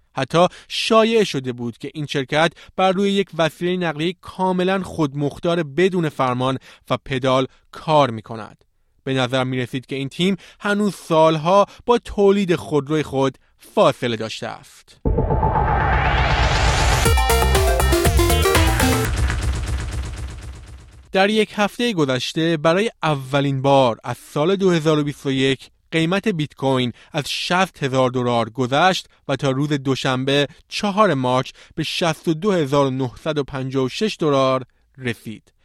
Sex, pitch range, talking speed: male, 130-180 Hz, 110 wpm